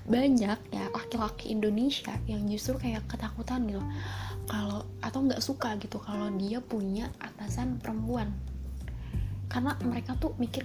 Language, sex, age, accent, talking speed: Indonesian, female, 20-39, native, 130 wpm